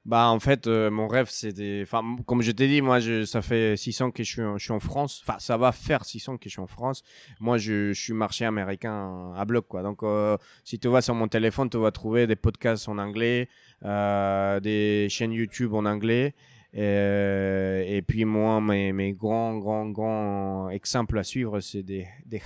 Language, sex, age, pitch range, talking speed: French, male, 20-39, 100-125 Hz, 210 wpm